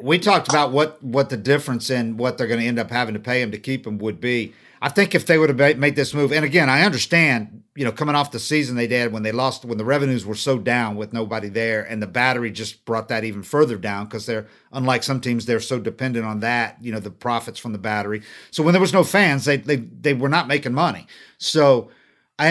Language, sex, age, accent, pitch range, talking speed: English, male, 50-69, American, 120-165 Hz, 260 wpm